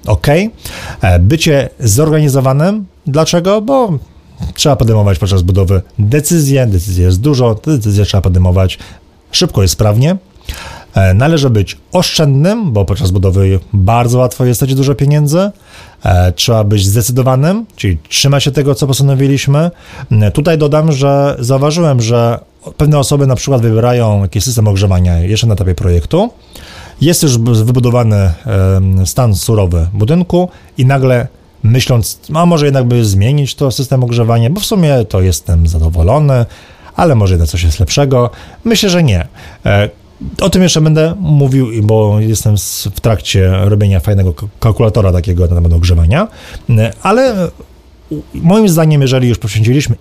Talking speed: 135 wpm